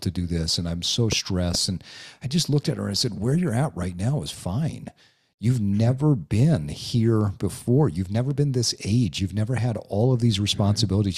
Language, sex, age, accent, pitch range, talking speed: English, male, 40-59, American, 100-140 Hz, 215 wpm